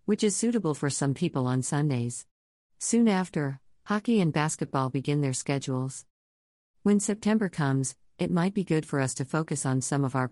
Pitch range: 120-160 Hz